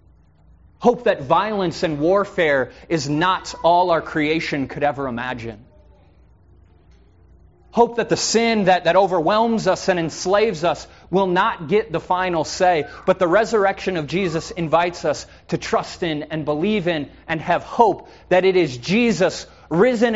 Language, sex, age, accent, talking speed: English, male, 30-49, American, 150 wpm